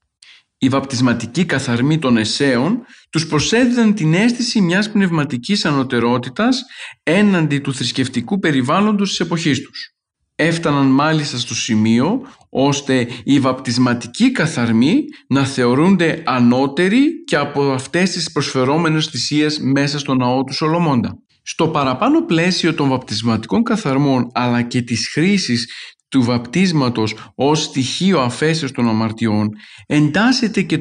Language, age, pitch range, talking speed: Greek, 50-69, 130-175 Hz, 115 wpm